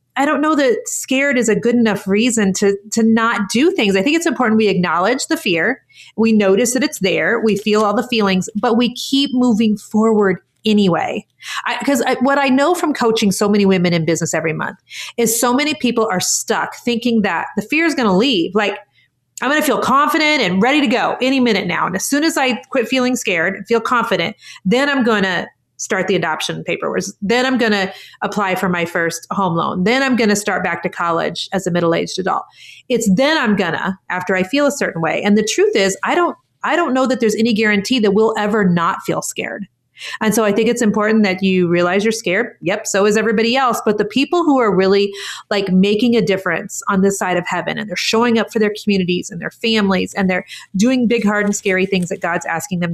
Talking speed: 230 wpm